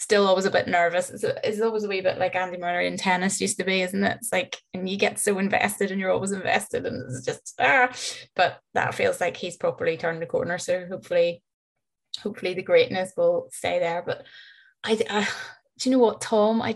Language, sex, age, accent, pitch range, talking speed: English, female, 20-39, British, 185-220 Hz, 220 wpm